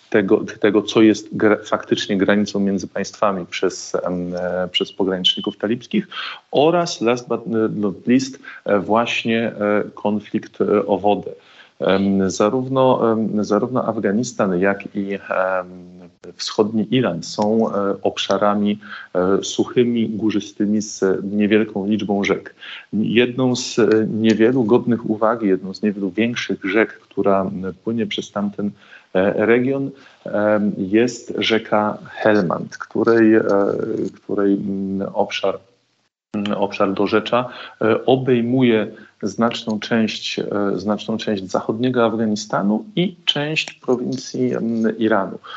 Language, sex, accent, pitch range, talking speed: Polish, male, native, 100-120 Hz, 95 wpm